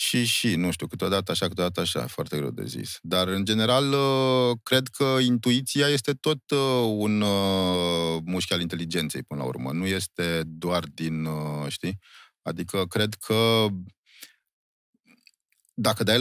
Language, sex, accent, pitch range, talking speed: Romanian, male, native, 85-115 Hz, 135 wpm